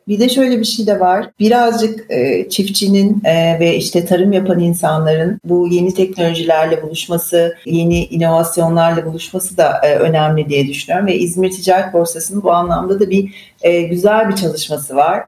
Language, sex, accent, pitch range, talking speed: Turkish, female, native, 165-205 Hz, 160 wpm